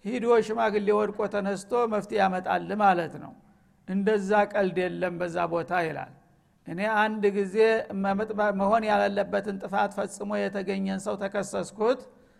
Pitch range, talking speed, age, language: 190-215 Hz, 115 wpm, 60-79, Amharic